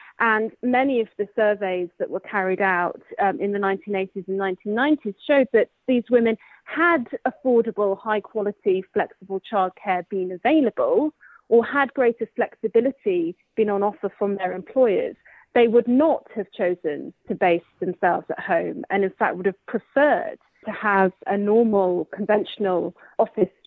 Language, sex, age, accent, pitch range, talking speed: English, female, 30-49, British, 190-240 Hz, 145 wpm